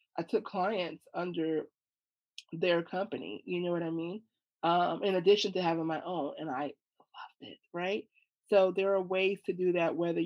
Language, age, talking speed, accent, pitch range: English, 30-49, 180 wpm, American, 165-210 Hz